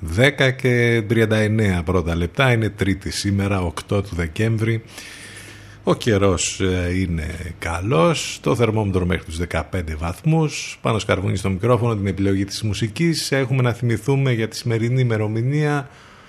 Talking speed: 130 wpm